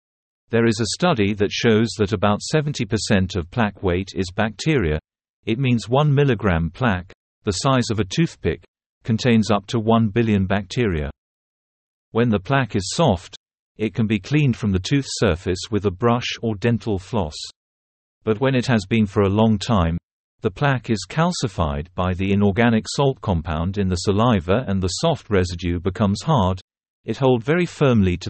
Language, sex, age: Vietnamese, male, 50-69